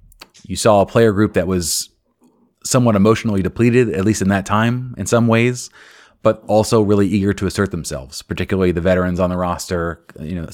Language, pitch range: English, 90-105 Hz